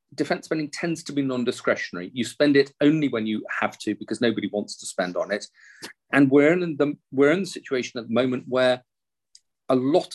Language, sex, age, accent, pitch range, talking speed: English, male, 40-59, British, 105-140 Hz, 205 wpm